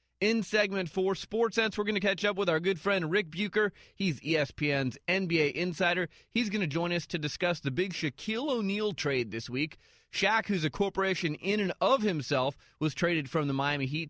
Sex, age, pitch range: male, 30-49, 150-195 Hz